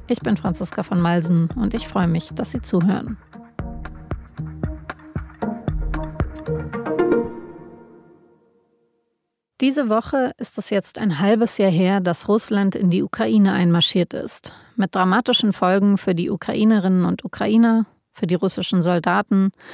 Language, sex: German, female